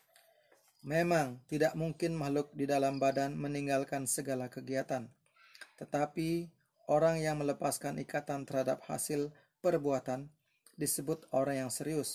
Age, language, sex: 30-49, Indonesian, male